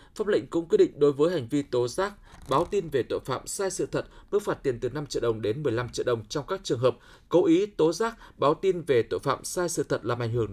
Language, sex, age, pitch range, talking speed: Vietnamese, male, 20-39, 130-195 Hz, 280 wpm